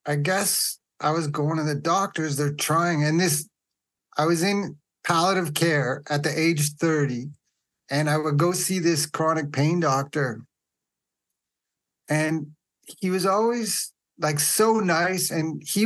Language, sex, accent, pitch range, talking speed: English, male, American, 145-170 Hz, 150 wpm